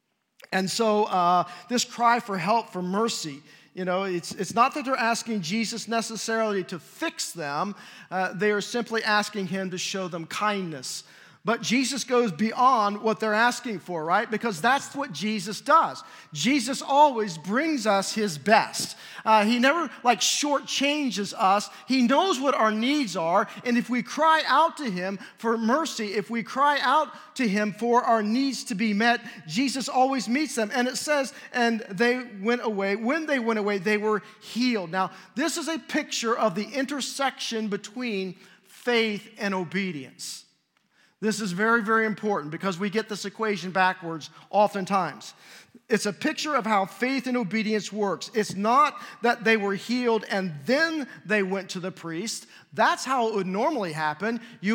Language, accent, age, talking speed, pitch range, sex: English, American, 40-59, 170 wpm, 200-245 Hz, male